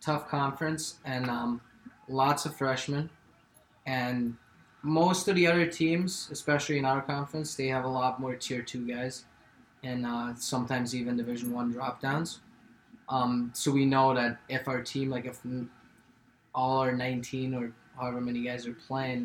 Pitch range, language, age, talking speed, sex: 120-145 Hz, English, 20-39, 160 wpm, male